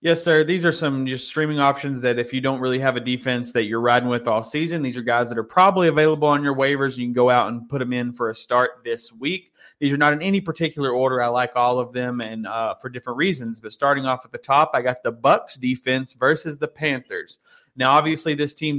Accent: American